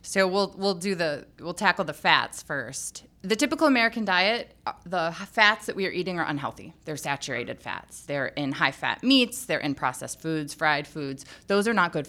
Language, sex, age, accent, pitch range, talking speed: English, female, 20-39, American, 150-210 Hz, 200 wpm